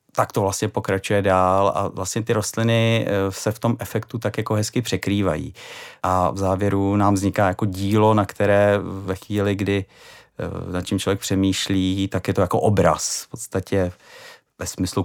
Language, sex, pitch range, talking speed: Czech, male, 95-110 Hz, 170 wpm